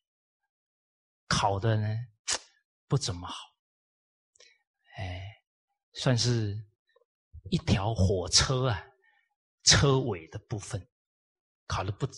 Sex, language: male, Chinese